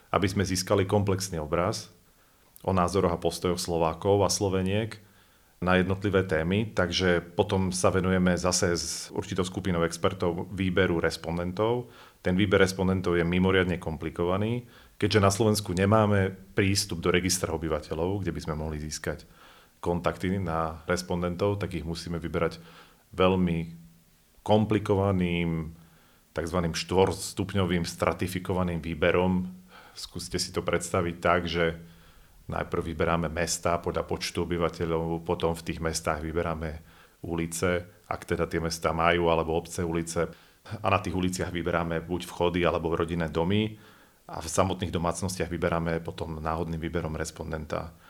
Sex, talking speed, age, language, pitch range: male, 130 wpm, 40-59, Slovak, 85-95 Hz